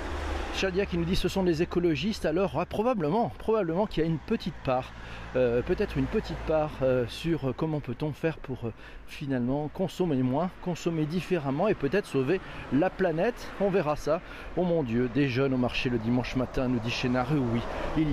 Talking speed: 195 wpm